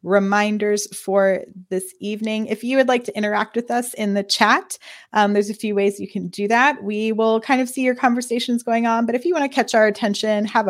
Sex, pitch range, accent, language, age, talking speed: female, 200-255 Hz, American, English, 30-49, 235 wpm